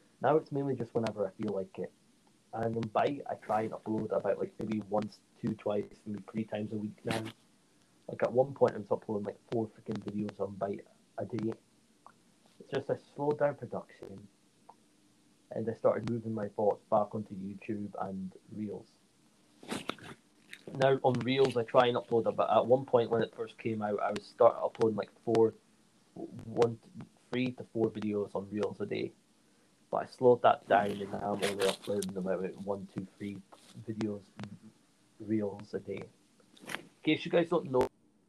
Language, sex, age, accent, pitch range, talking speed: English, male, 20-39, British, 105-125 Hz, 180 wpm